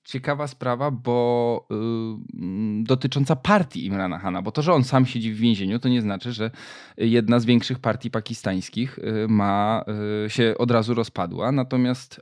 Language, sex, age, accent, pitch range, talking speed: Polish, male, 20-39, native, 110-135 Hz, 160 wpm